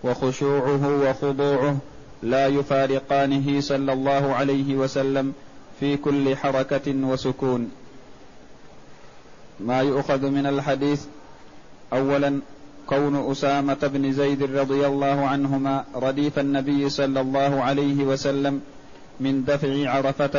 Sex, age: male, 30-49